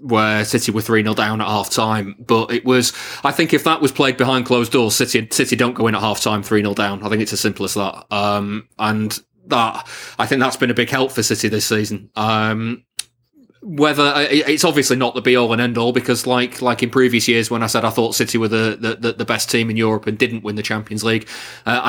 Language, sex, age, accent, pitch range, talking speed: English, male, 20-39, British, 110-125 Hz, 245 wpm